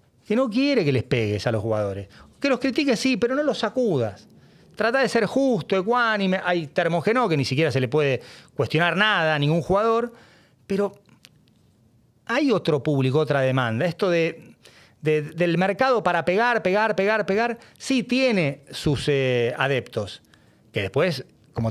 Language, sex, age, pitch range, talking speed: Spanish, male, 40-59, 135-225 Hz, 160 wpm